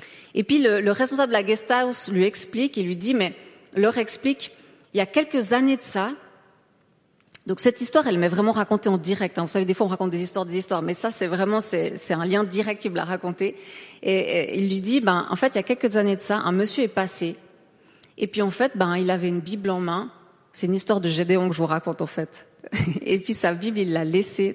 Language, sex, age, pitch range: French, female, 30-49, 180-240 Hz